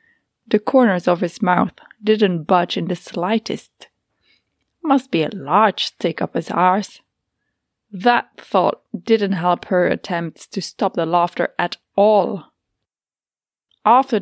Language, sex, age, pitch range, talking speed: English, female, 20-39, 175-225 Hz, 130 wpm